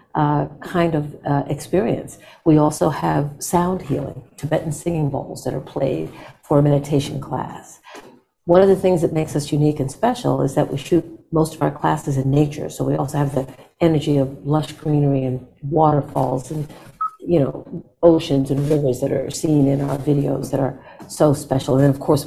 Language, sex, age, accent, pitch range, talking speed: English, female, 60-79, American, 135-150 Hz, 190 wpm